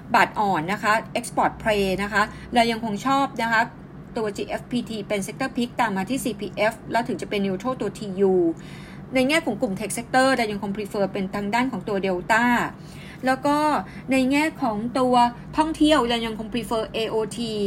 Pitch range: 200-245 Hz